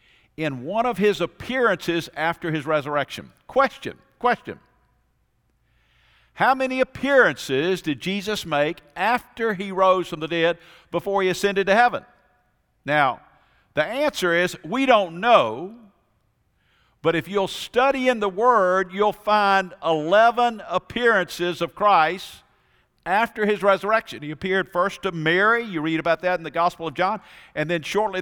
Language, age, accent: English, 50-69, American